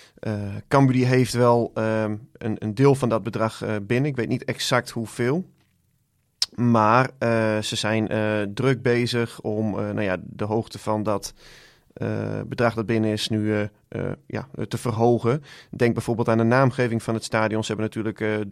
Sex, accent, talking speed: male, Dutch, 180 wpm